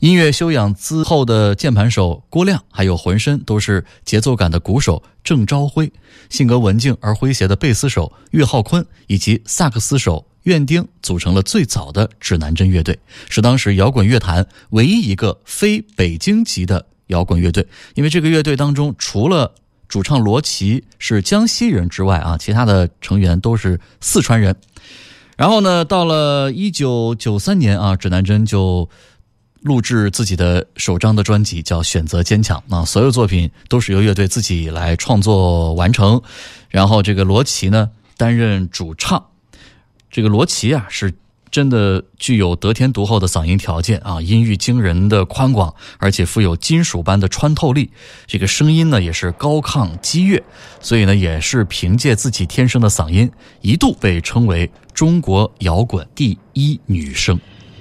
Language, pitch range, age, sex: Chinese, 95-130 Hz, 20-39, male